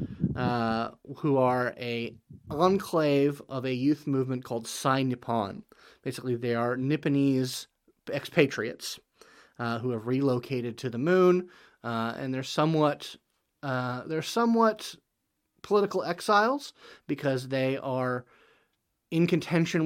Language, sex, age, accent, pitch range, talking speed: English, male, 30-49, American, 115-140 Hz, 115 wpm